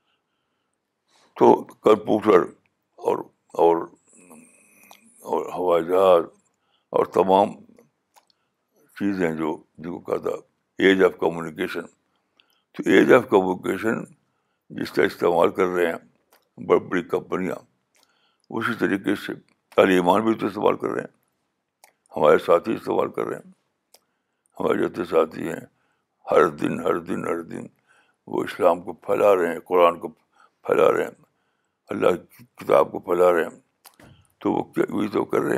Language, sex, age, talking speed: Urdu, male, 60-79, 130 wpm